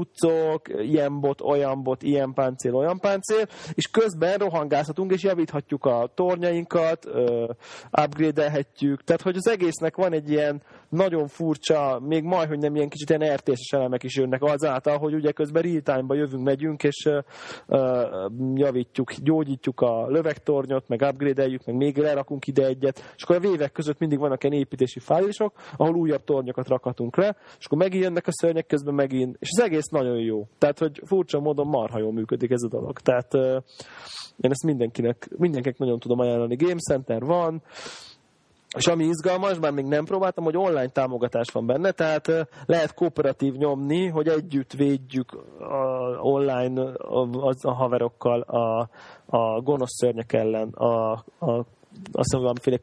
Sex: male